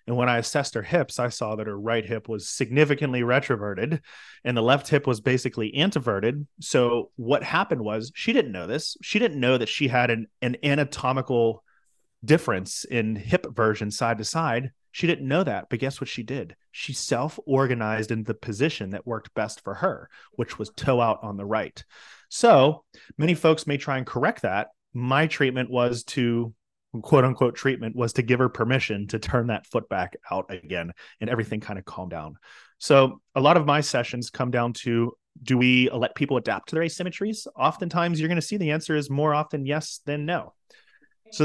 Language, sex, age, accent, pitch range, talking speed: English, male, 30-49, American, 115-150 Hz, 195 wpm